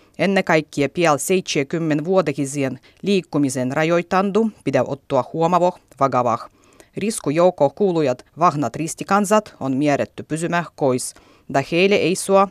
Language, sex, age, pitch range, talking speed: Finnish, female, 30-49, 135-180 Hz, 105 wpm